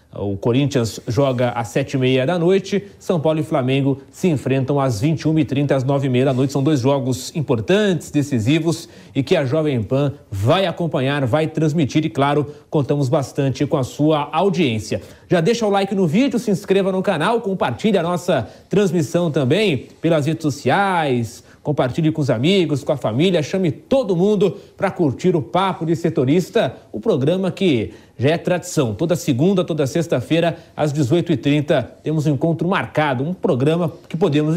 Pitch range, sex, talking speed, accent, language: 135-170 Hz, male, 175 wpm, Brazilian, English